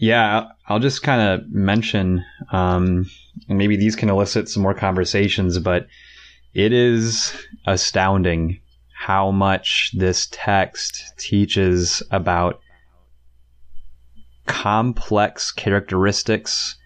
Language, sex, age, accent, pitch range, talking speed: English, male, 30-49, American, 90-105 Hz, 95 wpm